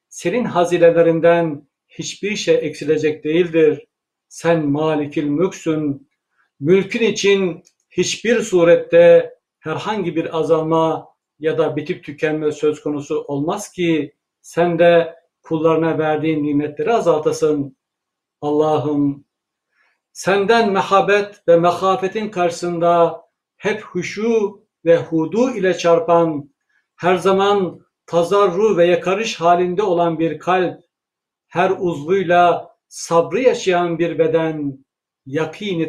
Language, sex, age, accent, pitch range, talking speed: Turkish, male, 60-79, native, 155-180 Hz, 95 wpm